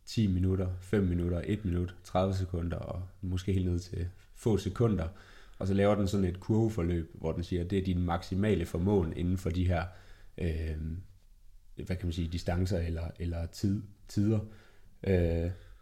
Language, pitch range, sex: Danish, 90-100 Hz, male